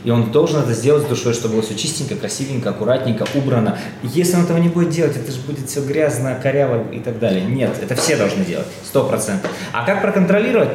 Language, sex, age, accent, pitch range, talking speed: Russian, male, 20-39, native, 120-155 Hz, 220 wpm